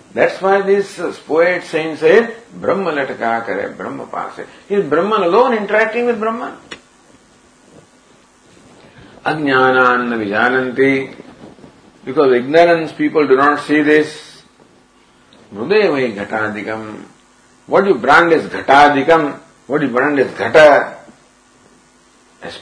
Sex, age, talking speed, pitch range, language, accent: male, 50-69, 100 wpm, 140-215 Hz, English, Indian